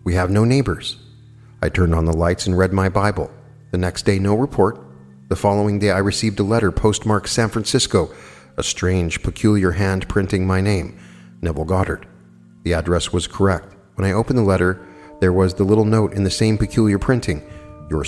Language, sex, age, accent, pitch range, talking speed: English, male, 50-69, American, 90-110 Hz, 190 wpm